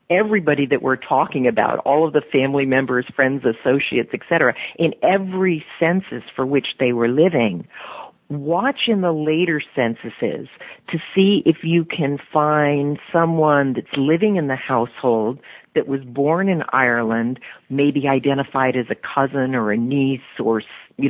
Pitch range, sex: 135-170 Hz, female